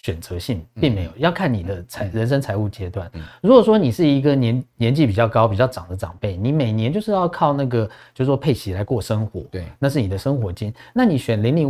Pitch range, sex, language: 105-140 Hz, male, Chinese